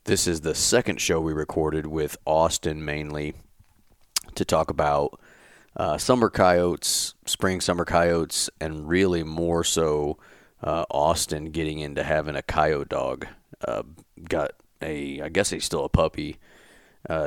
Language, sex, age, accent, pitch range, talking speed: English, male, 30-49, American, 75-85 Hz, 145 wpm